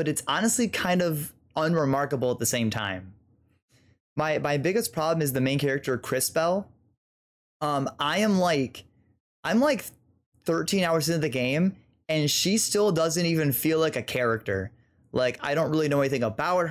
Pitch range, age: 125-160 Hz, 20-39